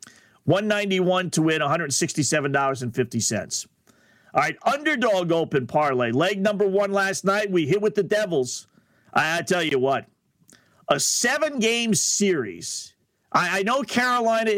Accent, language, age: American, English, 50-69